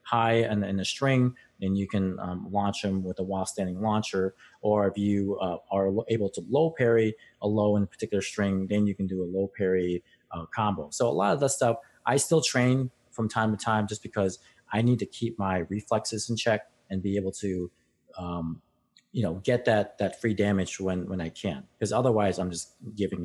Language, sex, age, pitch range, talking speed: English, male, 30-49, 95-115 Hz, 220 wpm